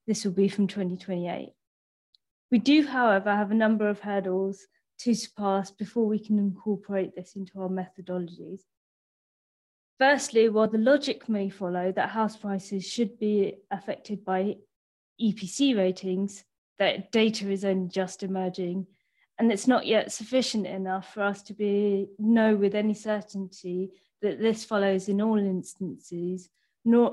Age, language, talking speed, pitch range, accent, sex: 30-49, English, 145 wpm, 190-220 Hz, British, female